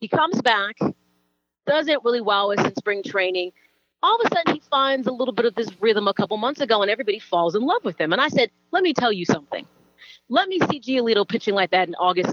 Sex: female